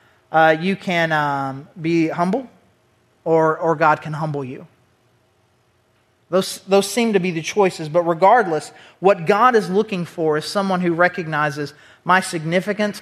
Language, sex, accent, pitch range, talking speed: English, male, American, 155-200 Hz, 145 wpm